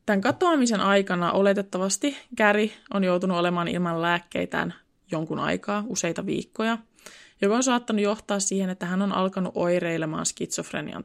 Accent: native